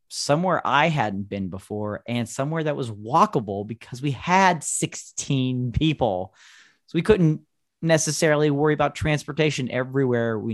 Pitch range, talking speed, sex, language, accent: 105-135 Hz, 135 wpm, male, English, American